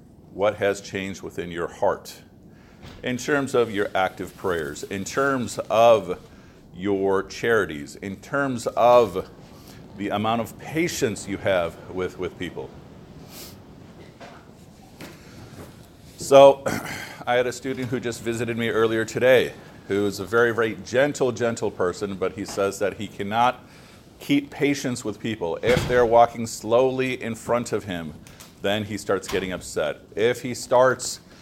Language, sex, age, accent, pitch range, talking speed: English, male, 50-69, American, 100-125 Hz, 140 wpm